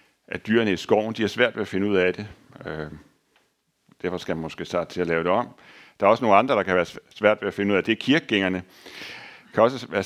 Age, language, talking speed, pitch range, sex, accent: 60-79, Danish, 275 wpm, 105-145 Hz, male, native